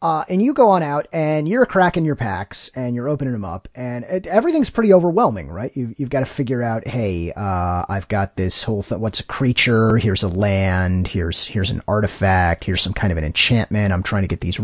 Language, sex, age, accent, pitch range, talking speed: English, male, 30-49, American, 100-155 Hz, 230 wpm